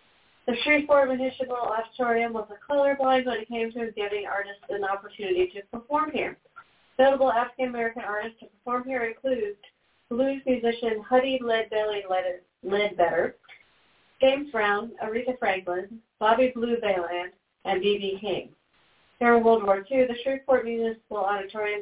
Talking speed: 130 wpm